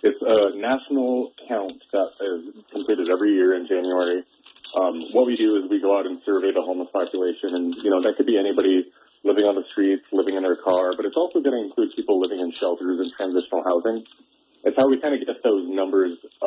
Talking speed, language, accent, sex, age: 220 wpm, English, American, male, 30-49